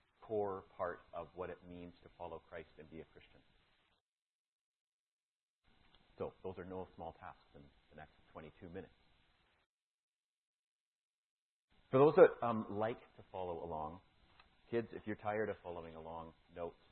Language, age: English, 40-59